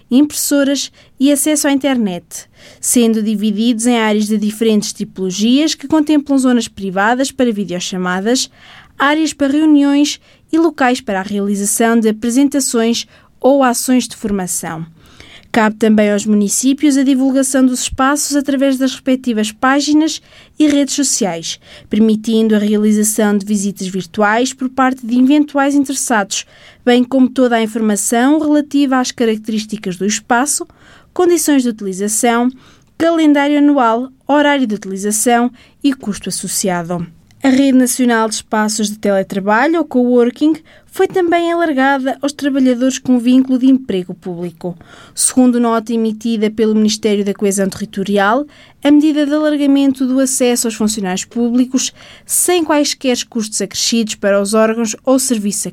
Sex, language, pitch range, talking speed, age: female, Portuguese, 215-275 Hz, 135 wpm, 20-39